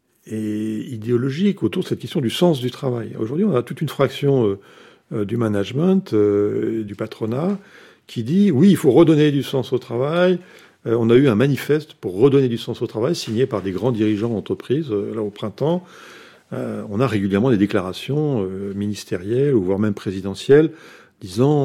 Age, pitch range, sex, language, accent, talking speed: 50-69, 105-140 Hz, male, French, French, 175 wpm